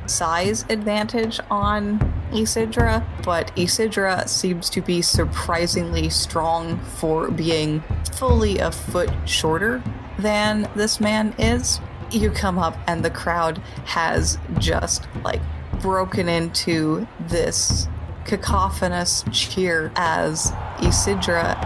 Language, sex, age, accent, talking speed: English, female, 30-49, American, 105 wpm